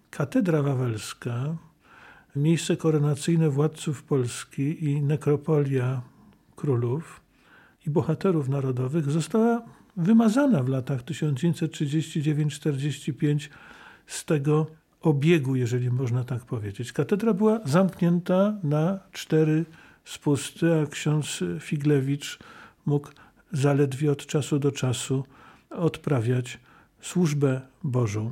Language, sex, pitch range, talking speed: Polish, male, 145-175 Hz, 90 wpm